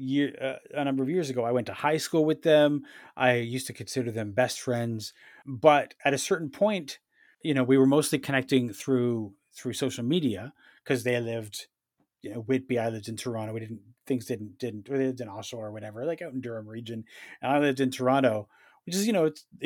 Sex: male